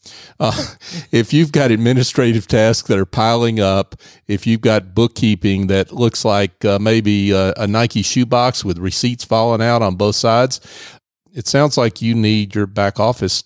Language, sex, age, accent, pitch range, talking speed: English, male, 40-59, American, 100-130 Hz, 170 wpm